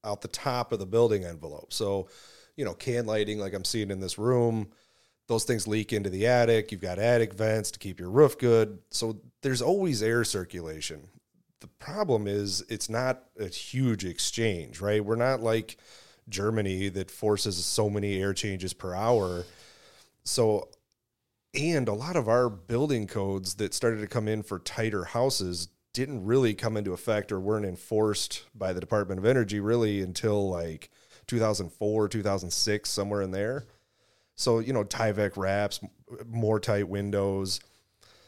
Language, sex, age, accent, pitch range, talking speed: English, male, 30-49, American, 100-115 Hz, 165 wpm